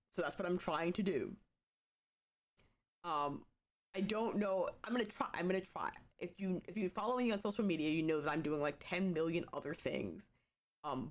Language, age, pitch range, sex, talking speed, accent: English, 20-39, 165-210 Hz, female, 200 wpm, American